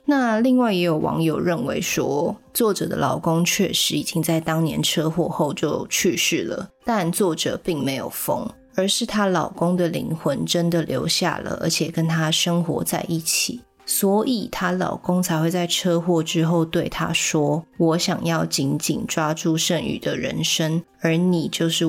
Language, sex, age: Chinese, female, 20-39